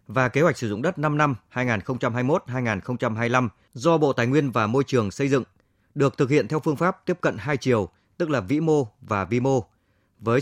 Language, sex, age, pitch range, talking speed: Vietnamese, male, 20-39, 105-140 Hz, 215 wpm